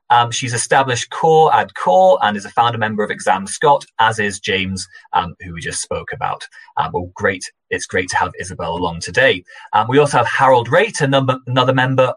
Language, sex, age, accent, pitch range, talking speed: English, male, 30-49, British, 100-145 Hz, 200 wpm